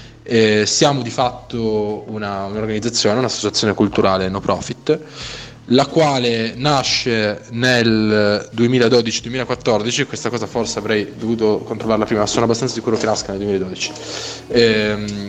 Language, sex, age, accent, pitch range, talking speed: Italian, male, 20-39, native, 105-125 Hz, 120 wpm